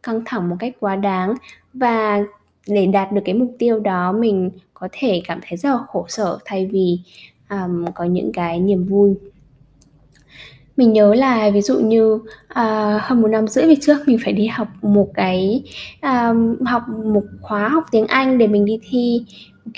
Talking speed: 190 wpm